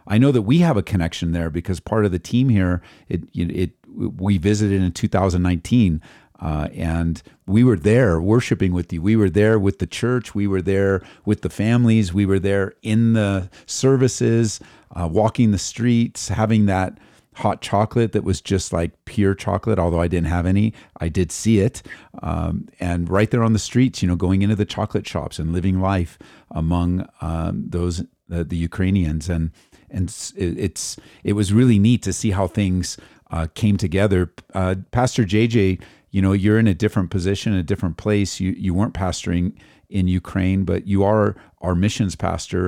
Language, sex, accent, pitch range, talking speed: English, male, American, 90-110 Hz, 185 wpm